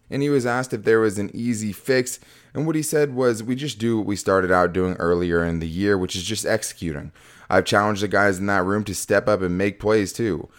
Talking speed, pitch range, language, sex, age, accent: 255 wpm, 95-115 Hz, English, male, 20-39, American